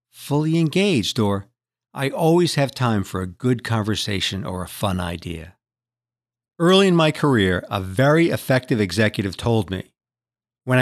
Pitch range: 115-165 Hz